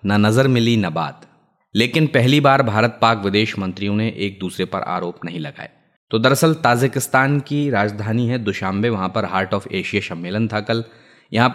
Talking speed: 180 wpm